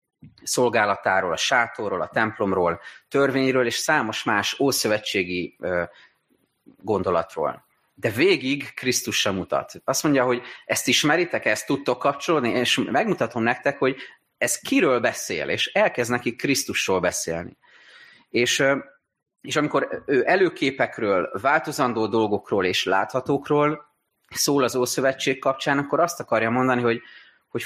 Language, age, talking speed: Hungarian, 30-49, 120 wpm